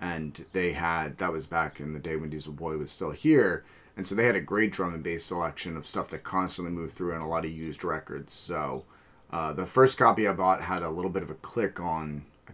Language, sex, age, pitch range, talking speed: English, male, 30-49, 80-100 Hz, 255 wpm